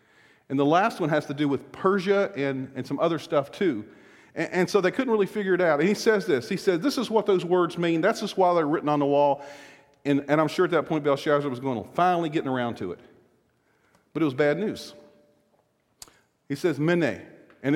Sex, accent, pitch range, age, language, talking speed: male, American, 145-225 Hz, 50-69, English, 235 wpm